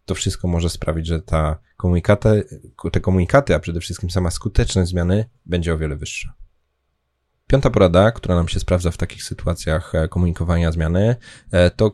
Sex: male